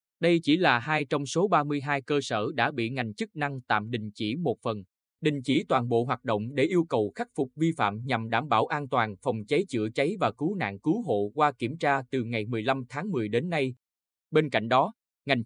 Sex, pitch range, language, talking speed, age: male, 110-155 Hz, Vietnamese, 235 wpm, 20-39